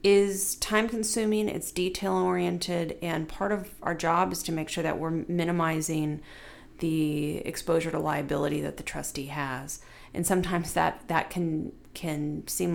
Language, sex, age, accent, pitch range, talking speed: English, female, 40-59, American, 155-210 Hz, 145 wpm